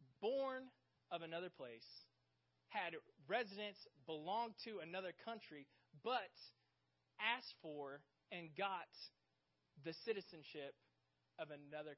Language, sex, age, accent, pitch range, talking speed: English, male, 20-39, American, 150-195 Hz, 95 wpm